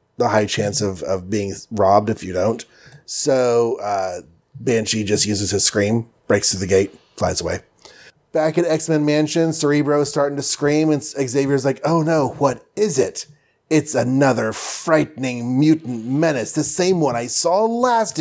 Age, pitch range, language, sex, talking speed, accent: 30-49, 115-145 Hz, English, male, 170 wpm, American